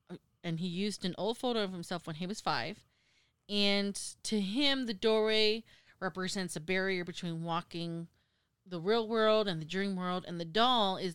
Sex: female